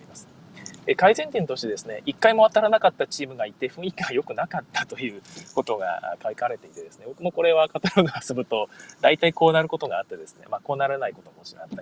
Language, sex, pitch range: Japanese, male, 145-215 Hz